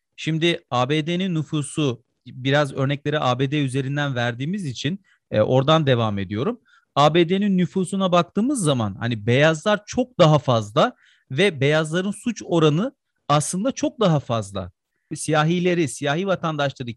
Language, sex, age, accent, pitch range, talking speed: Turkish, male, 40-59, native, 135-170 Hz, 115 wpm